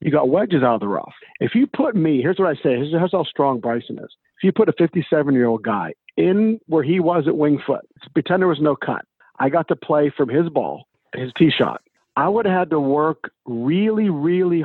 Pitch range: 125-165 Hz